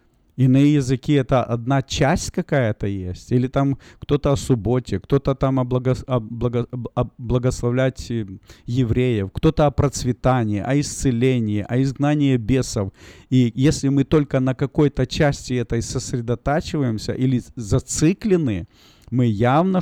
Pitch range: 120-145 Hz